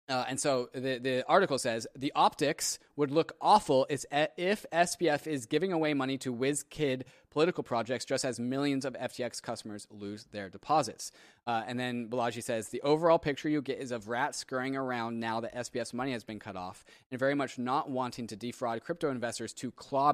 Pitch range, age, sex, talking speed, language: 120-150 Hz, 20-39, male, 195 wpm, English